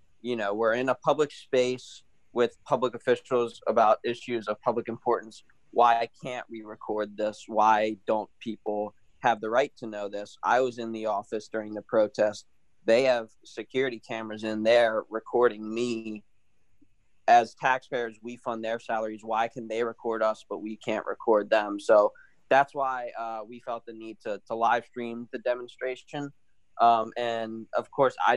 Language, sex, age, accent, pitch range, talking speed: English, male, 20-39, American, 105-120 Hz, 170 wpm